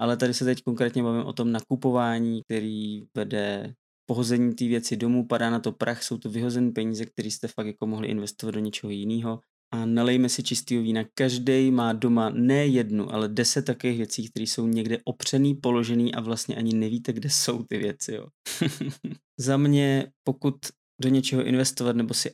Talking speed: 185 wpm